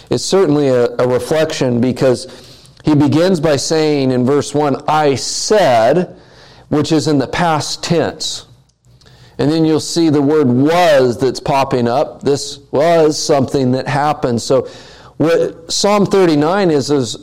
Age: 40-59